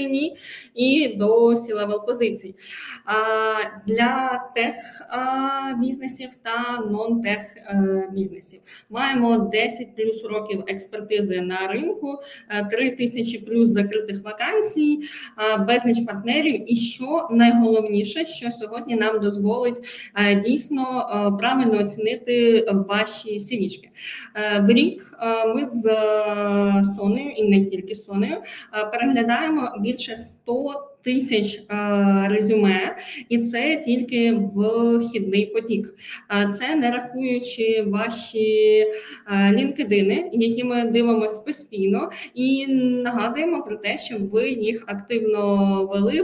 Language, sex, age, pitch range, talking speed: Ukrainian, female, 20-39, 210-250 Hz, 95 wpm